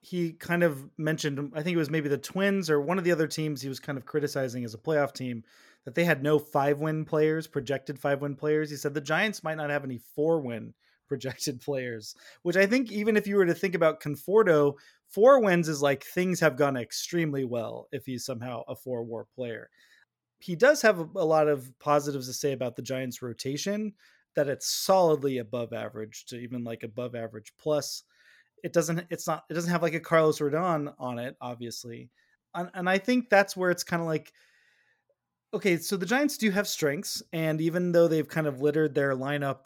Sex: male